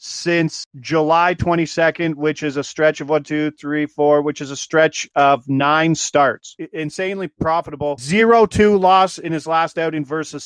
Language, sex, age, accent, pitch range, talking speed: English, male, 40-59, American, 140-160 Hz, 165 wpm